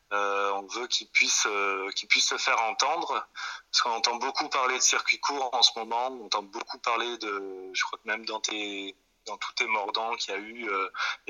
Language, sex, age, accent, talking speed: French, male, 20-39, French, 220 wpm